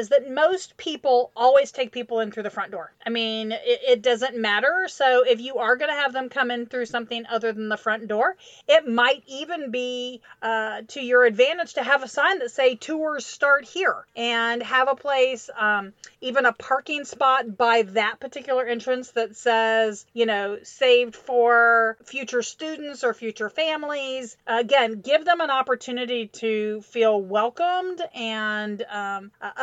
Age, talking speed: 40-59, 175 wpm